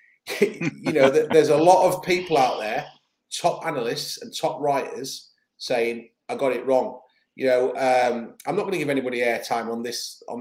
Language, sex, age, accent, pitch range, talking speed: English, male, 30-49, British, 130-180 Hz, 185 wpm